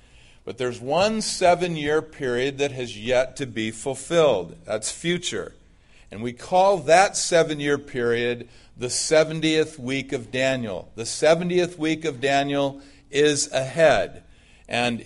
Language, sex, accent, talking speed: English, male, American, 130 wpm